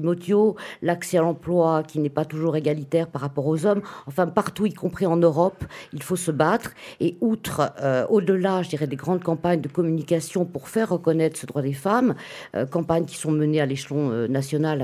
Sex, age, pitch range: female, 50-69, 150-180 Hz